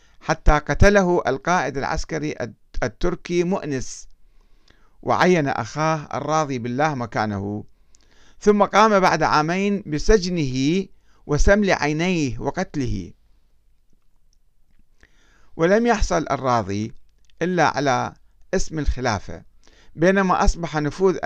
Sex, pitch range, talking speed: male, 125-180 Hz, 80 wpm